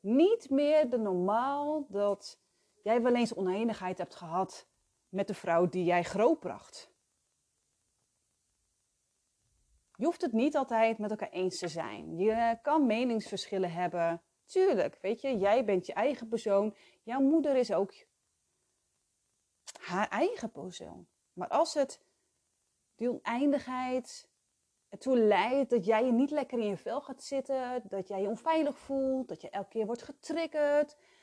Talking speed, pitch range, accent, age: 140 wpm, 195-270 Hz, Dutch, 30-49